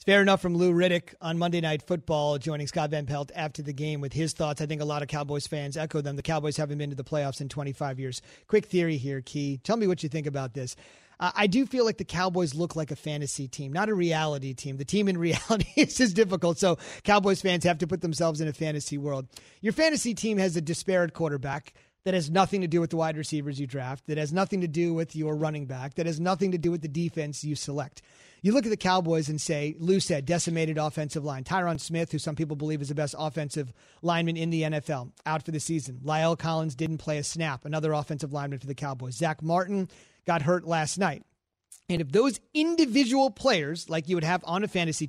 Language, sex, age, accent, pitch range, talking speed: English, male, 30-49, American, 150-180 Hz, 240 wpm